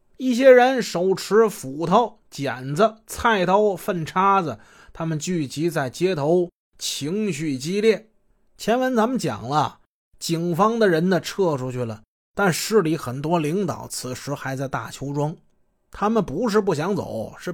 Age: 20-39